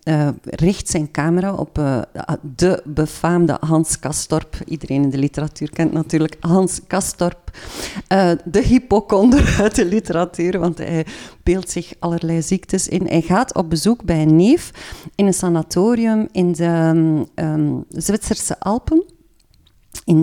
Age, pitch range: 40-59, 155-185 Hz